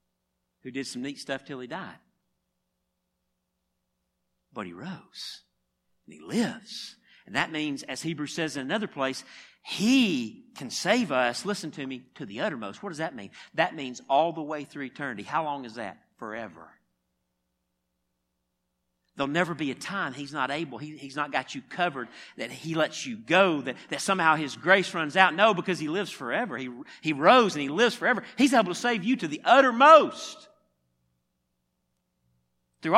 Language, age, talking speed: English, 50-69, 175 wpm